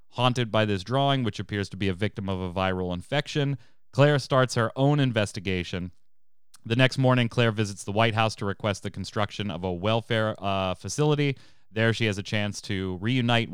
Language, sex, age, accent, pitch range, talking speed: English, male, 30-49, American, 95-120 Hz, 190 wpm